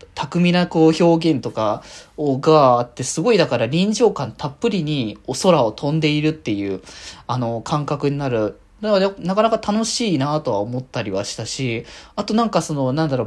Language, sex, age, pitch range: Japanese, male, 20-39, 120-200 Hz